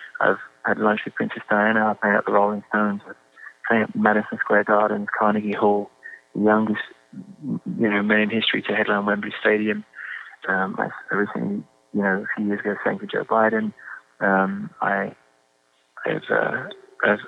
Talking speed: 160 wpm